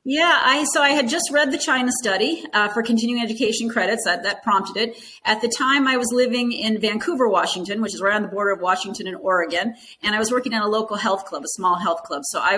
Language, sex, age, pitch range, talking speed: English, female, 40-59, 200-260 Hz, 255 wpm